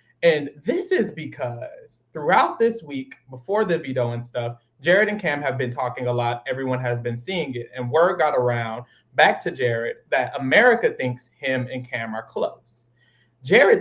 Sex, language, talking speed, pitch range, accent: male, English, 180 wpm, 125-195 Hz, American